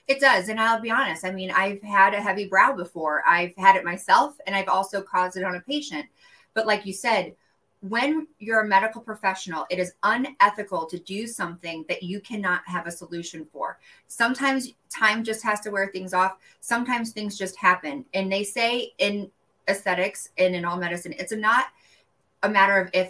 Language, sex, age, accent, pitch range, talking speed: English, female, 20-39, American, 175-215 Hz, 195 wpm